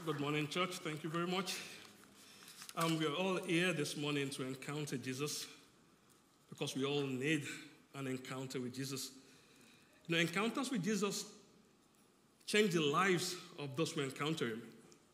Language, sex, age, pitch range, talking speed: English, male, 50-69, 155-200 Hz, 155 wpm